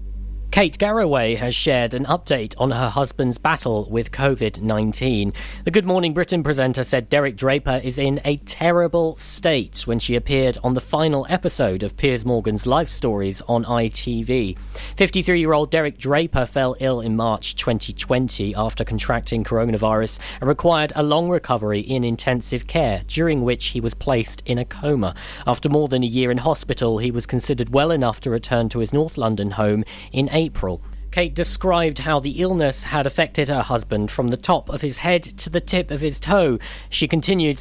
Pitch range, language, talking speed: 115-150 Hz, English, 175 wpm